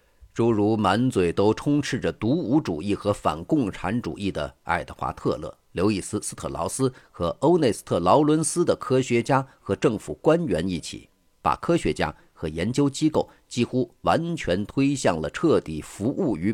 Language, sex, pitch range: Chinese, male, 100-135 Hz